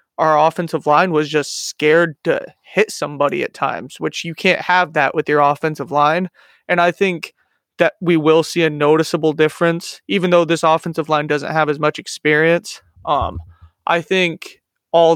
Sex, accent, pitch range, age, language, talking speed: male, American, 145-165 Hz, 20-39, English, 175 wpm